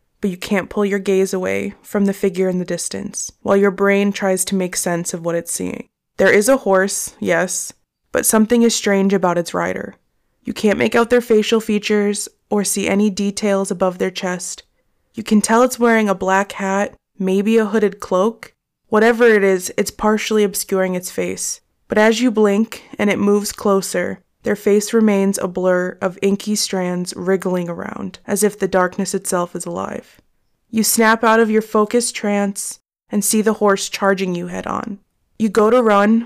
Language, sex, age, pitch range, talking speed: English, female, 20-39, 190-215 Hz, 185 wpm